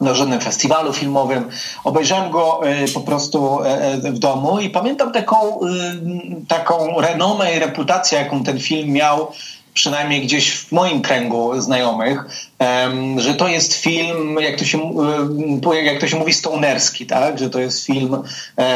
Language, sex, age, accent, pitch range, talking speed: Polish, male, 30-49, native, 135-165 Hz, 140 wpm